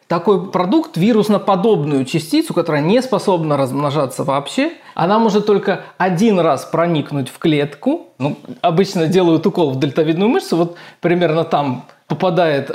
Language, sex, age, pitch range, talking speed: Russian, male, 20-39, 155-215 Hz, 135 wpm